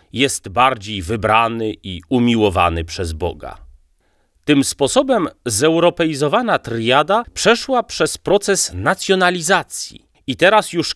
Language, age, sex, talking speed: Polish, 30-49, male, 100 wpm